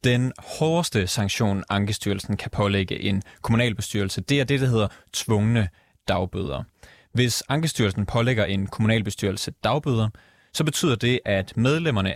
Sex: male